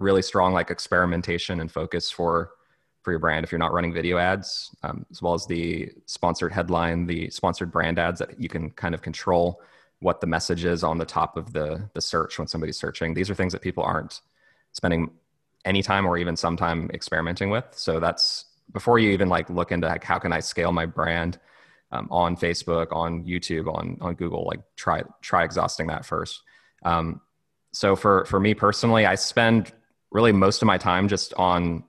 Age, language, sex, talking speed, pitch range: 20-39, English, male, 200 wpm, 85-95 Hz